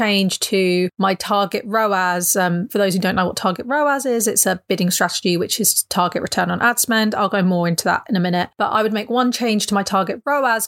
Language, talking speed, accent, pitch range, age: English, 245 wpm, British, 190-225 Hz, 30-49